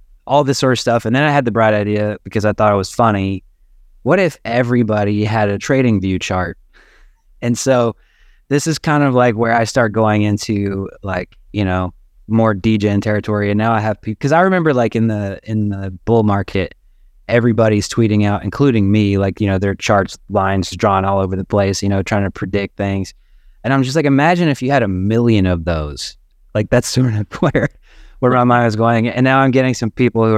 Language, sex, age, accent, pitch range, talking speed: English, male, 20-39, American, 100-120 Hz, 215 wpm